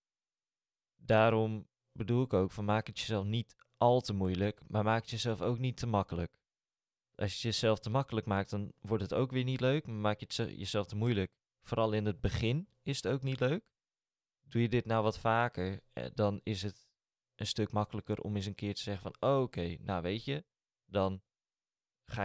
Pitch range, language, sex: 100-120 Hz, Dutch, male